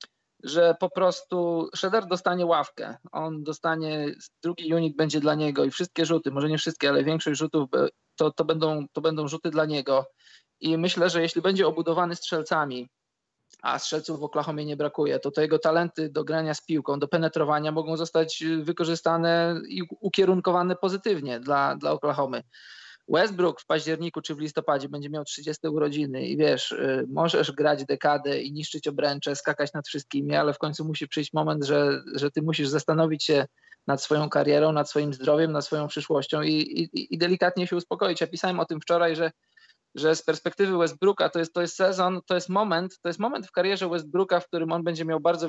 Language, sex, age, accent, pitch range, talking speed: Polish, male, 20-39, native, 150-175 Hz, 185 wpm